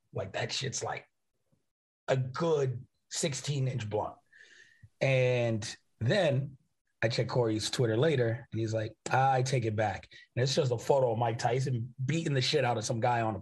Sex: male